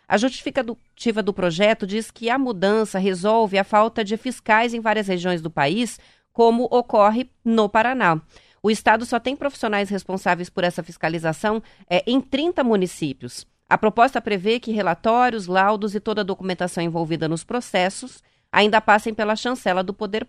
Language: Portuguese